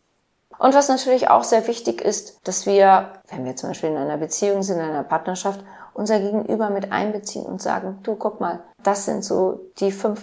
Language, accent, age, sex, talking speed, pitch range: German, German, 30-49, female, 200 wpm, 180-215 Hz